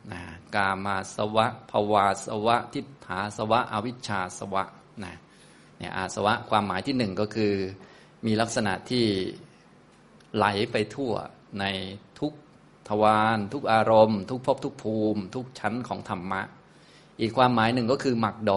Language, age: Thai, 20-39